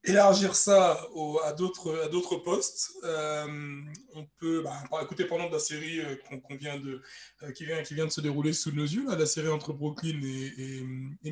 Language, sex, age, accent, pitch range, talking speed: French, male, 20-39, French, 150-195 Hz, 215 wpm